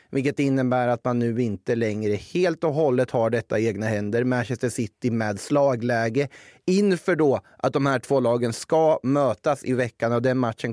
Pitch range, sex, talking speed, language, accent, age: 115-145 Hz, male, 180 wpm, Swedish, native, 30-49